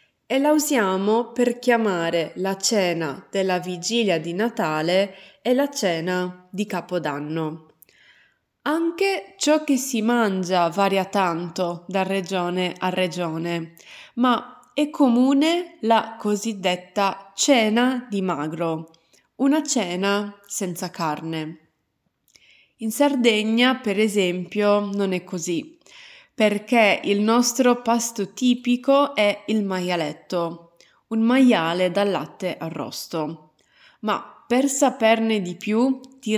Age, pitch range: 20-39, 180-240 Hz